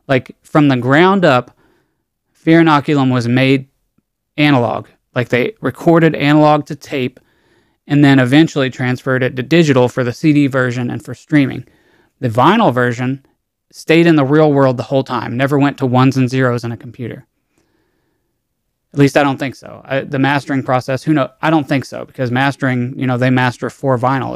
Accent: American